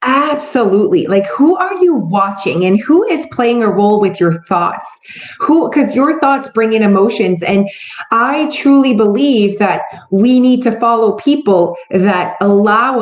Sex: female